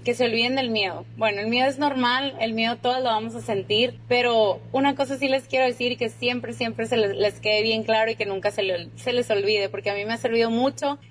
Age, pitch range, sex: 20-39, 205-240 Hz, female